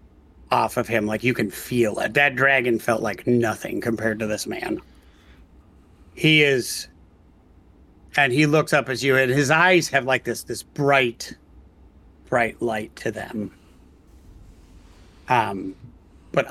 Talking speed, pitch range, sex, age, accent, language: 140 wpm, 90-130 Hz, male, 30-49, American, English